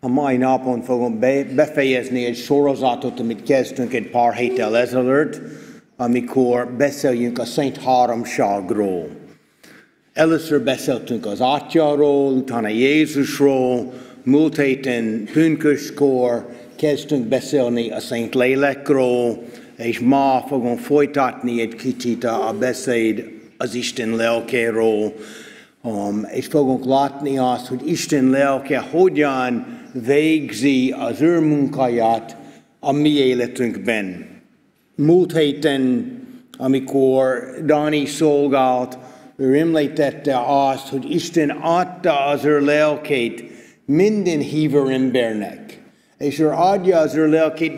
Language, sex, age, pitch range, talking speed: Hungarian, male, 60-79, 125-155 Hz, 105 wpm